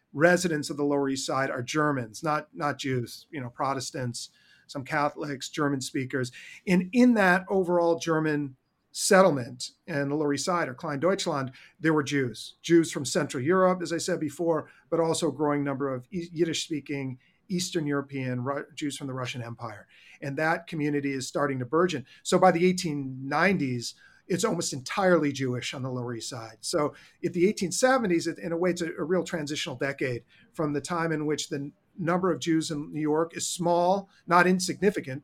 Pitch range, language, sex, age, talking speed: 140-170 Hz, English, male, 40-59, 180 wpm